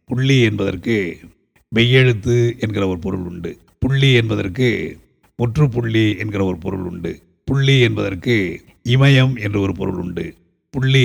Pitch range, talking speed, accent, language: 95-120 Hz, 120 wpm, native, Tamil